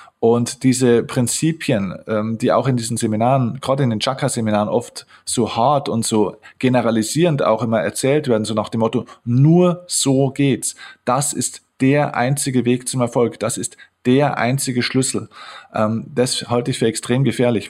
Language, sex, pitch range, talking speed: German, male, 115-135 Hz, 165 wpm